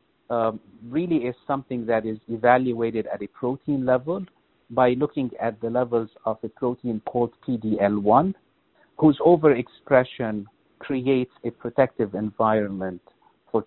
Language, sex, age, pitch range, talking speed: English, male, 50-69, 115-150 Hz, 125 wpm